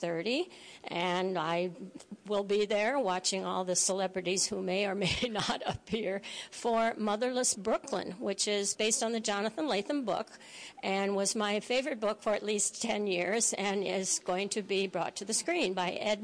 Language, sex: English, female